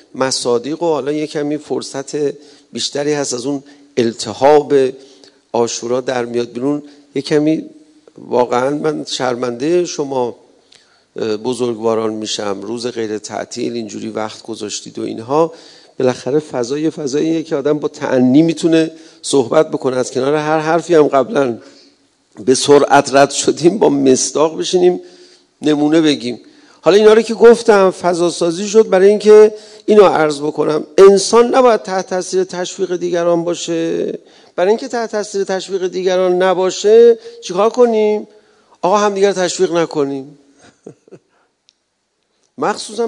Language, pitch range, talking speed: Persian, 140-205 Hz, 125 wpm